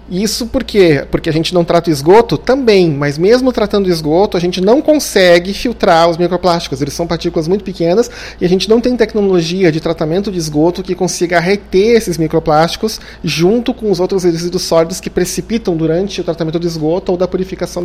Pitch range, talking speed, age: 165-205 Hz, 190 wpm, 40-59